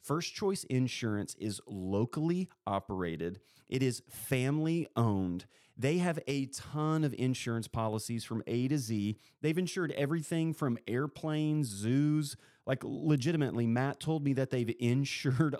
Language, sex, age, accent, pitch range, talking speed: English, male, 30-49, American, 110-145 Hz, 135 wpm